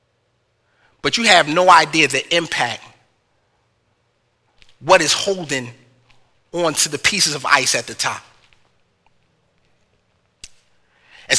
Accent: American